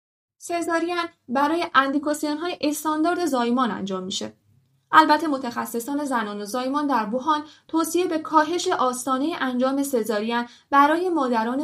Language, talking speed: Persian, 115 wpm